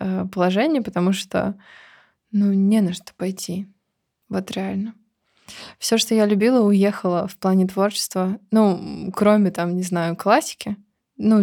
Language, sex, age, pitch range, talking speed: Russian, female, 20-39, 185-210 Hz, 130 wpm